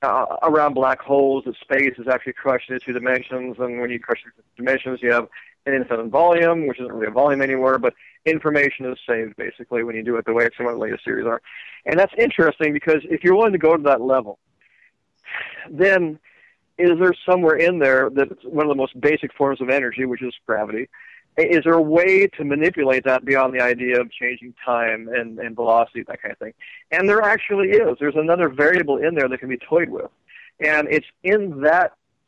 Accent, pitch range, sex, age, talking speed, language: American, 125-155 Hz, male, 50-69, 210 wpm, English